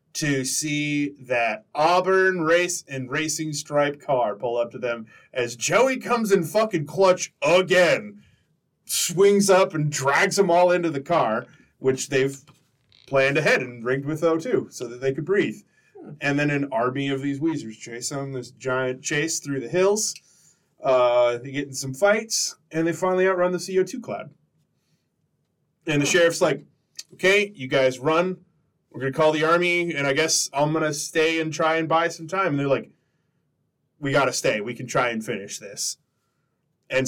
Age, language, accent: 30-49, English, American